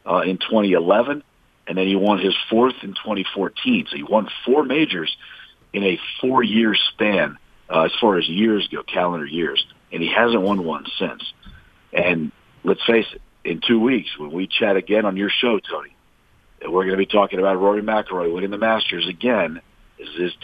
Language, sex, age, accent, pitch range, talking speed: English, male, 50-69, American, 95-110 Hz, 190 wpm